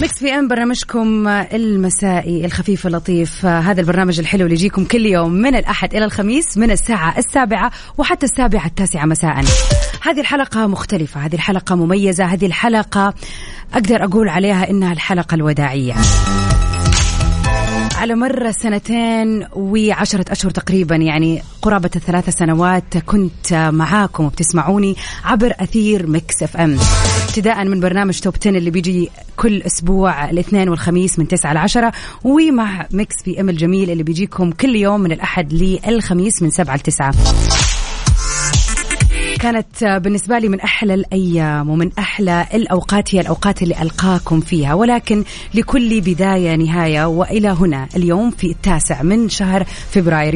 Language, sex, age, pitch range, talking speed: Arabic, female, 30-49, 160-205 Hz, 130 wpm